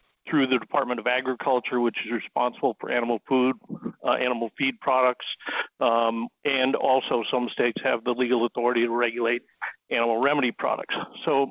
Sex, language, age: male, English, 60-79